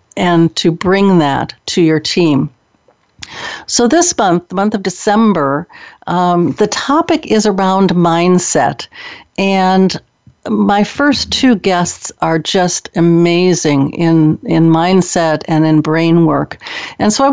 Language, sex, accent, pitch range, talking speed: English, female, American, 165-225 Hz, 130 wpm